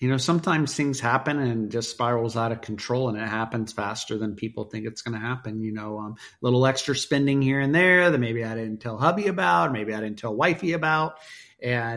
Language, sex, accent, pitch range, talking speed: English, male, American, 115-140 Hz, 235 wpm